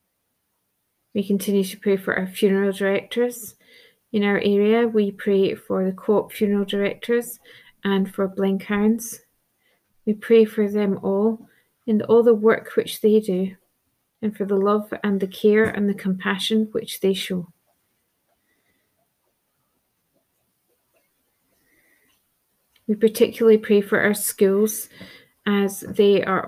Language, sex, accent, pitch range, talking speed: English, female, British, 195-220 Hz, 125 wpm